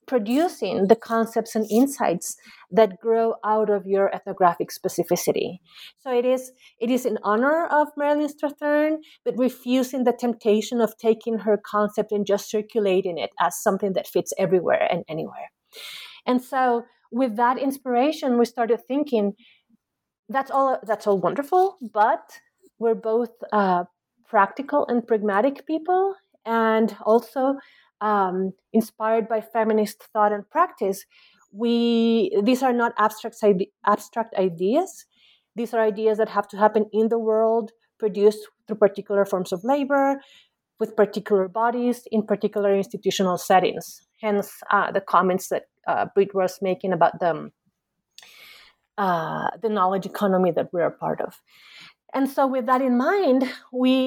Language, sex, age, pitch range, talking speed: English, female, 30-49, 205-255 Hz, 140 wpm